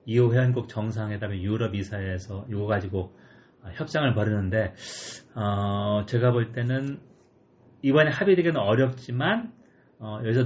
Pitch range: 105-130 Hz